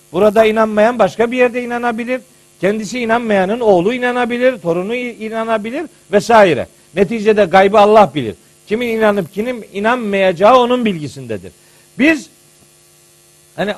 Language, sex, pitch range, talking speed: Turkish, male, 200-255 Hz, 110 wpm